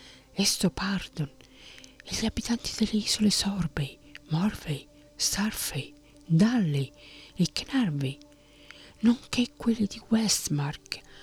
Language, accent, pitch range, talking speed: Italian, native, 145-180 Hz, 85 wpm